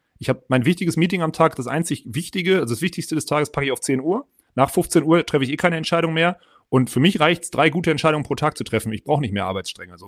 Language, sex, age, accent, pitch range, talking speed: German, male, 30-49, German, 115-160 Hz, 280 wpm